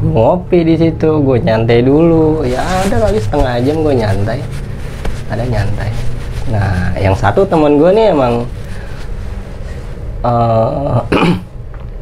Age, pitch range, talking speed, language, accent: 20-39, 100-120 Hz, 115 wpm, Indonesian, native